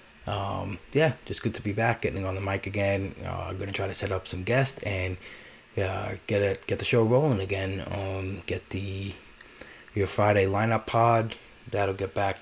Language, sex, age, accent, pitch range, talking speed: English, male, 20-39, American, 95-110 Hz, 190 wpm